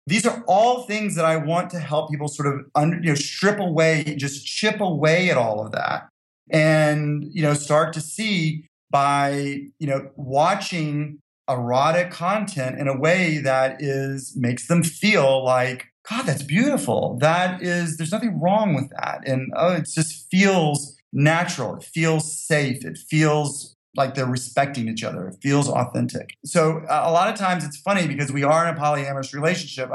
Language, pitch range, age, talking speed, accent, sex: English, 130-170 Hz, 30-49, 170 wpm, American, male